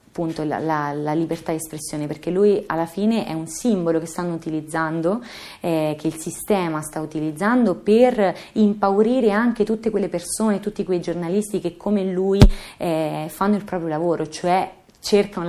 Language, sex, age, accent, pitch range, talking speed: Italian, female, 30-49, native, 160-200 Hz, 155 wpm